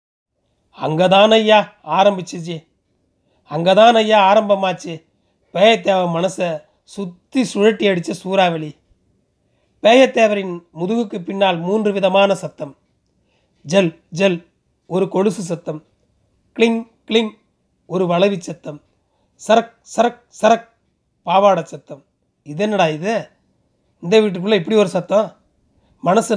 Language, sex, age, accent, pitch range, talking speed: Tamil, male, 30-49, native, 175-220 Hz, 100 wpm